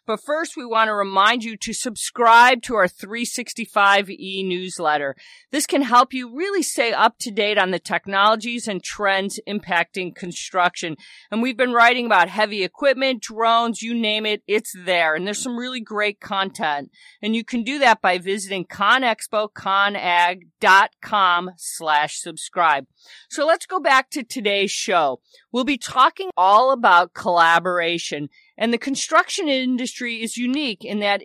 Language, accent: English, American